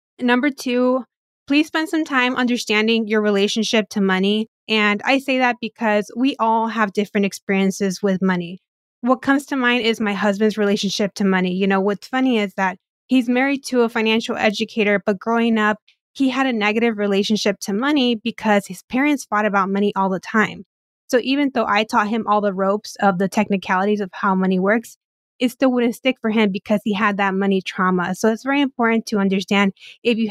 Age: 20-39